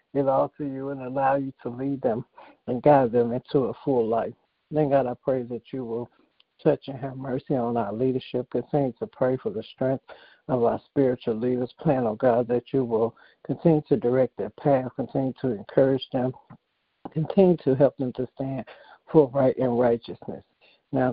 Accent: American